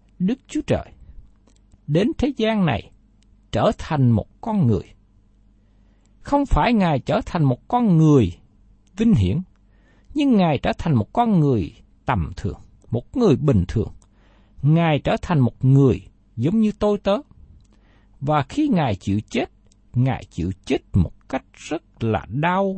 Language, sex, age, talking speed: Vietnamese, male, 60-79, 150 wpm